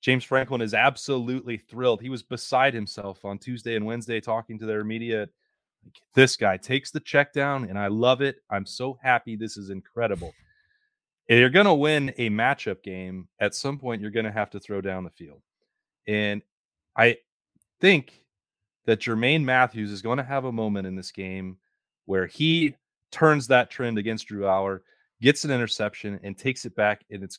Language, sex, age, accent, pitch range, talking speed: English, male, 30-49, American, 100-125 Hz, 185 wpm